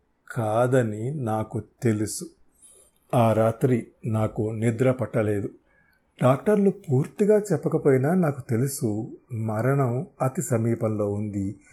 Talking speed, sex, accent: 85 wpm, male, native